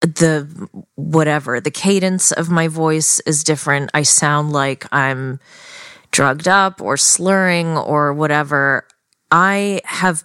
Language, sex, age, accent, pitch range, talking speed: English, female, 30-49, American, 145-175 Hz, 125 wpm